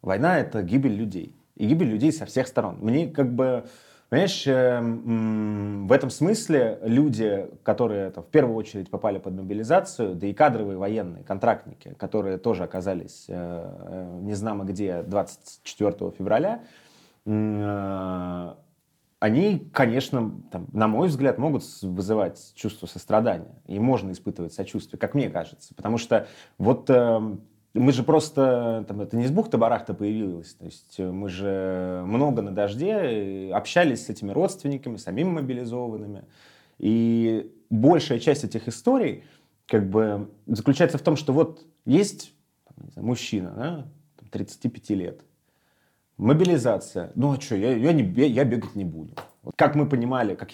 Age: 30-49